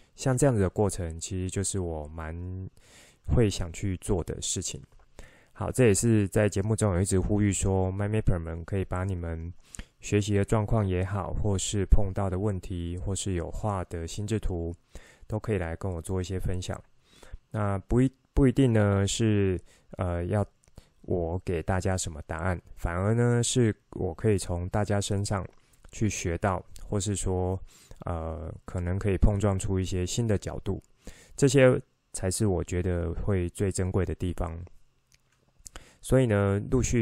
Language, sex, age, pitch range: Chinese, male, 20-39, 90-105 Hz